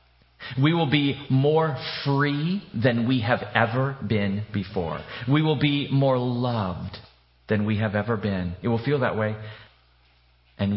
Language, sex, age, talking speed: English, male, 40-59, 150 wpm